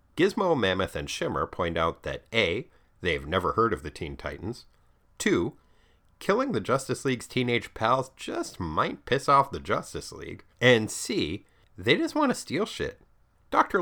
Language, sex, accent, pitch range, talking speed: English, male, American, 85-135 Hz, 165 wpm